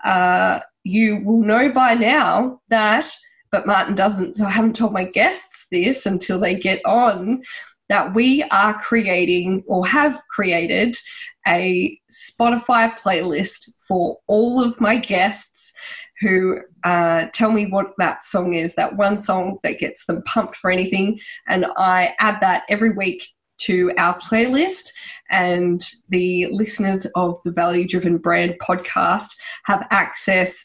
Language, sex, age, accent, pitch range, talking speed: English, female, 10-29, Australian, 185-240 Hz, 145 wpm